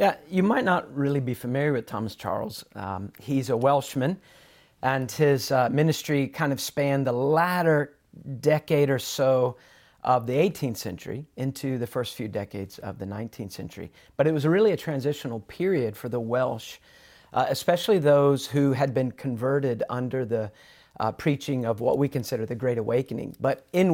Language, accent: English, American